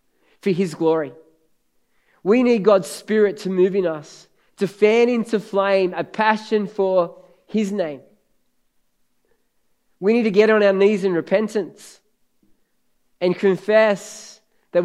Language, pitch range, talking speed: English, 155-195 Hz, 130 wpm